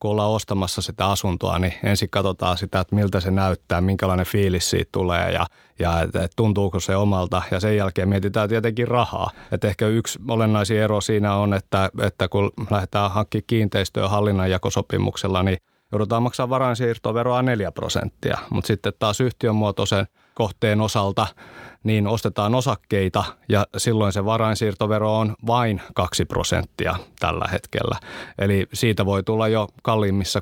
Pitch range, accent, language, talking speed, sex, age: 95-115 Hz, native, Finnish, 150 wpm, male, 30-49